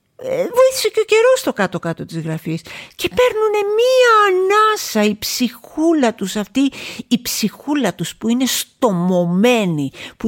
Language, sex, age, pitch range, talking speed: Greek, female, 50-69, 200-305 Hz, 135 wpm